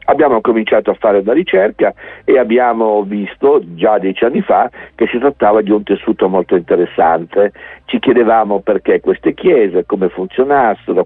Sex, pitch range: male, 95-125 Hz